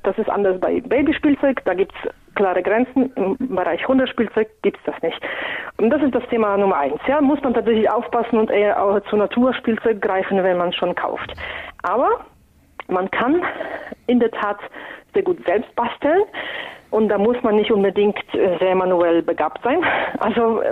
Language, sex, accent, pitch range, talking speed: German, female, German, 195-245 Hz, 175 wpm